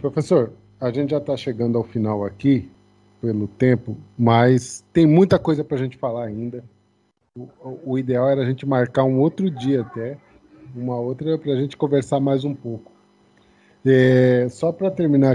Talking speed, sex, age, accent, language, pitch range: 165 wpm, male, 20-39, Brazilian, Portuguese, 120-145 Hz